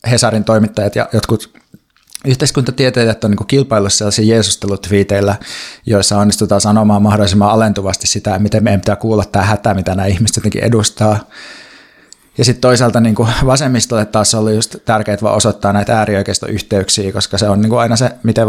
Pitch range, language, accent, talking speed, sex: 105-120 Hz, Finnish, native, 155 wpm, male